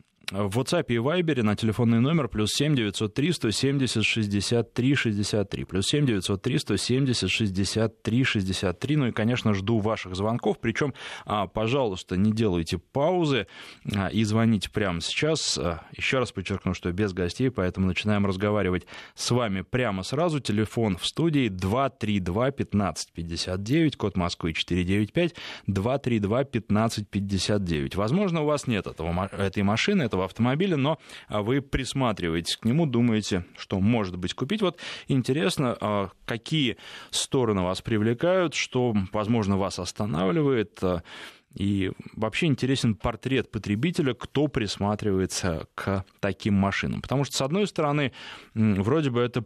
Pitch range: 95-125 Hz